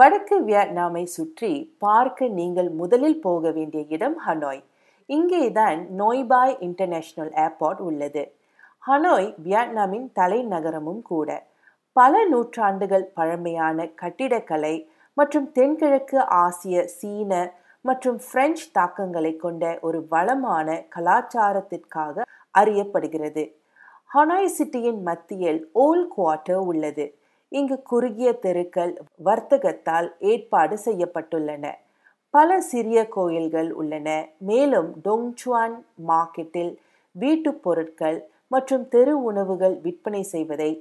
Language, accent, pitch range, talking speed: Tamil, native, 160-245 Hz, 90 wpm